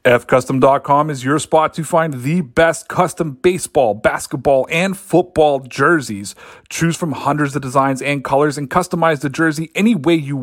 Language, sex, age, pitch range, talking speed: English, male, 30-49, 155-225 Hz, 160 wpm